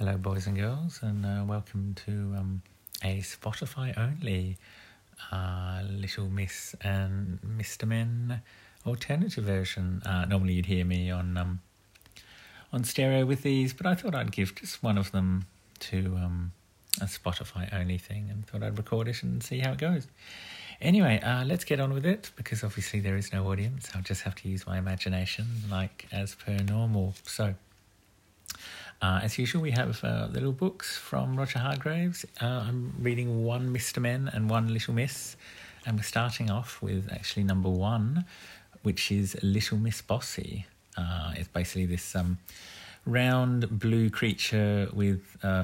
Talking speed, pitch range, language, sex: 160 wpm, 95-115 Hz, English, male